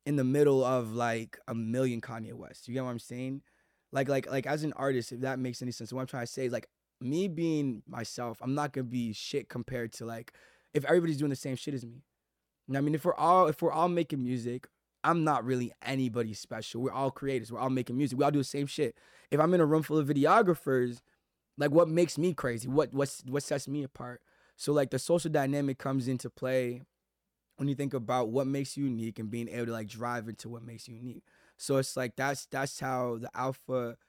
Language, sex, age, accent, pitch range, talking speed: English, male, 20-39, American, 120-140 Hz, 240 wpm